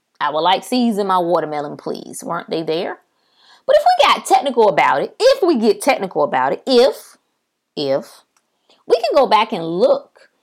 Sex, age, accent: female, 20-39, American